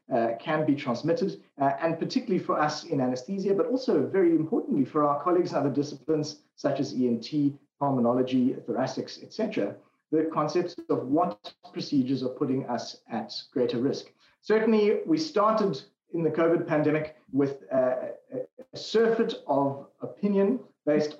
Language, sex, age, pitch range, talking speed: English, male, 30-49, 140-195 Hz, 155 wpm